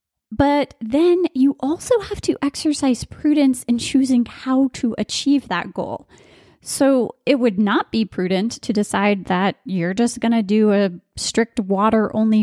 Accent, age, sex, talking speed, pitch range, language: American, 20-39, female, 155 wpm, 215-280 Hz, English